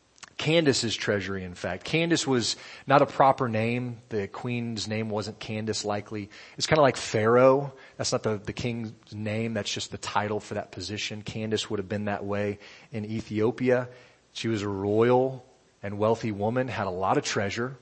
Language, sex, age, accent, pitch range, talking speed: English, male, 30-49, American, 105-140 Hz, 180 wpm